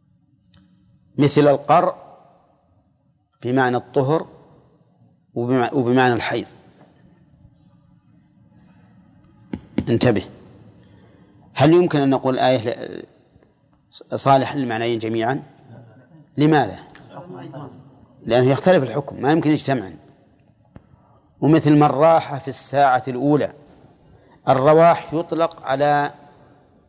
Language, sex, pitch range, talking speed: Arabic, male, 125-150 Hz, 65 wpm